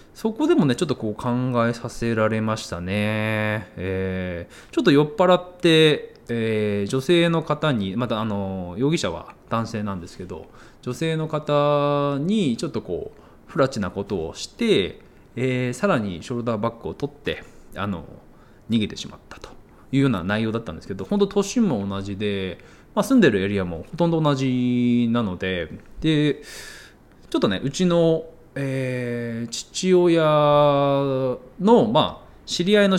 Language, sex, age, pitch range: Japanese, male, 20-39, 105-150 Hz